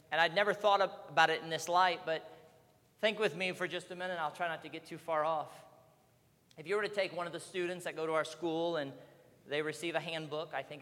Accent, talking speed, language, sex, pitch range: American, 265 wpm, English, male, 150-175 Hz